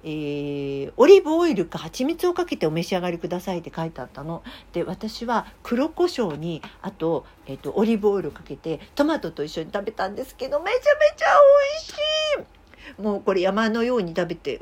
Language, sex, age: Japanese, female, 50-69